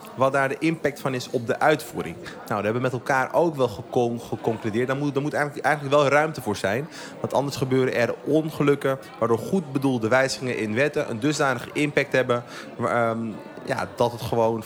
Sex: male